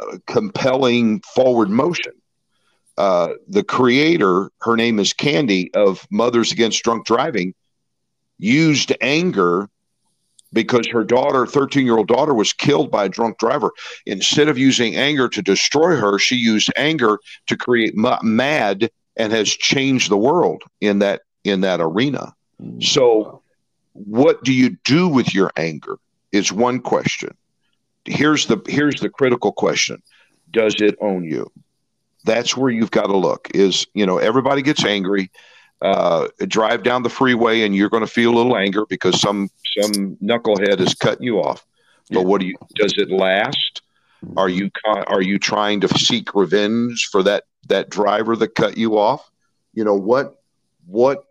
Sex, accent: male, American